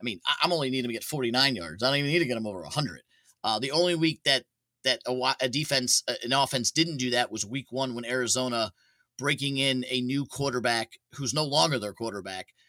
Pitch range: 115-140 Hz